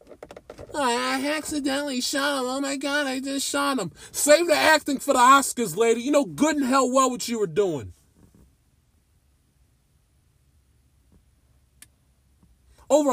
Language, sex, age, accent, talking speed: English, male, 40-59, American, 135 wpm